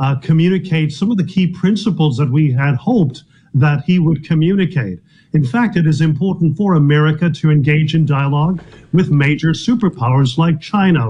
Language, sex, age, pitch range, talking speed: English, male, 50-69, 150-185 Hz, 170 wpm